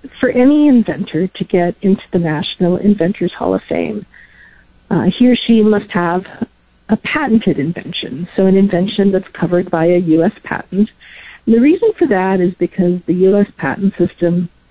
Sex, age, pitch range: female, 40-59, 175-225 Hz